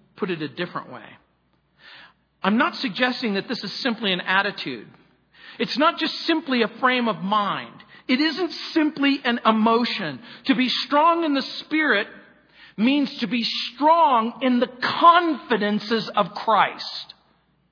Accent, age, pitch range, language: American, 50-69, 220-290 Hz, English